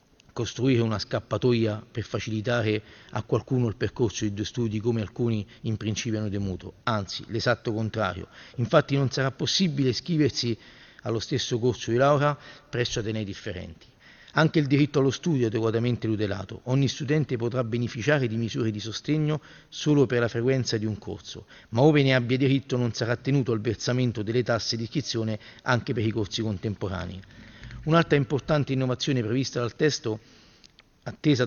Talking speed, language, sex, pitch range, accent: 160 wpm, Italian, male, 110-135 Hz, native